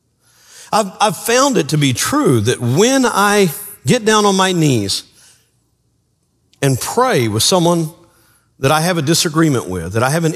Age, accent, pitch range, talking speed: 50-69, American, 110-165 Hz, 170 wpm